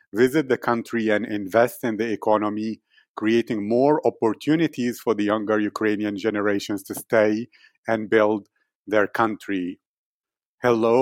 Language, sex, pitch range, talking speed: English, male, 105-115 Hz, 125 wpm